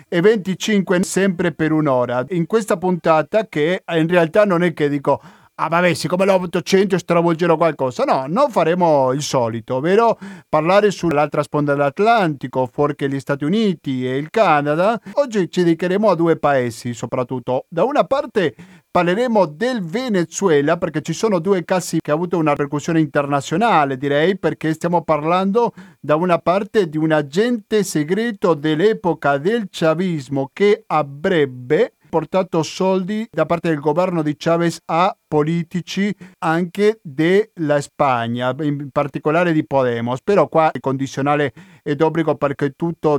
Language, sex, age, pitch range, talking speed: Italian, male, 50-69, 145-185 Hz, 145 wpm